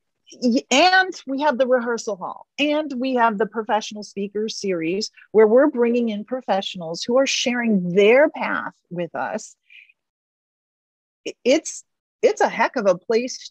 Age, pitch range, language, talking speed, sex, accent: 40-59, 200-280 Hz, English, 140 wpm, female, American